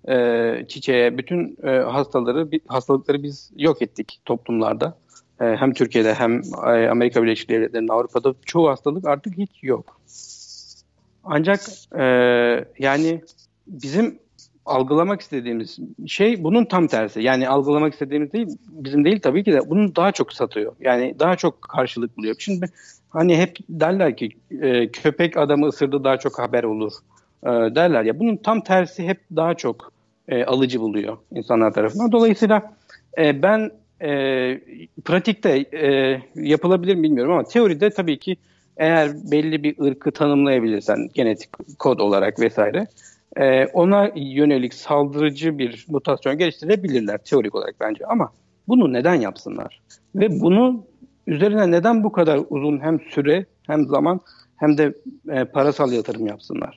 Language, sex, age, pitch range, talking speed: Turkish, male, 60-79, 125-180 Hz, 125 wpm